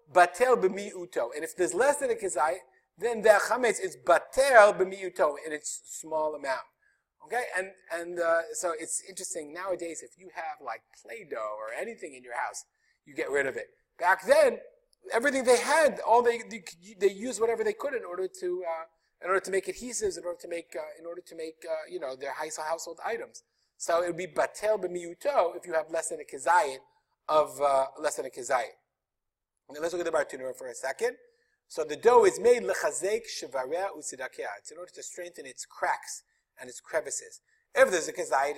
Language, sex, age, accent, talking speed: English, male, 30-49, American, 200 wpm